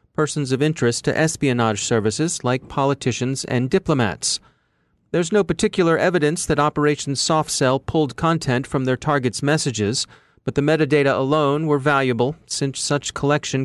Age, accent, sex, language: 40-59, American, male, English